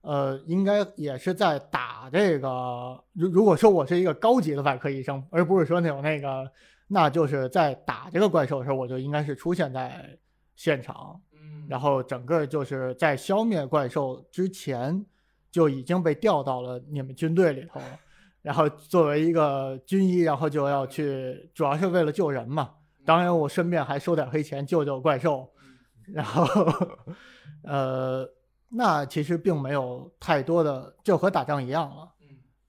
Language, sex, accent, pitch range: Chinese, male, native, 135-175 Hz